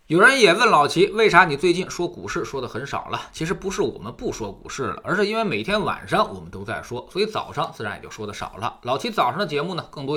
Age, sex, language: 20-39, male, Chinese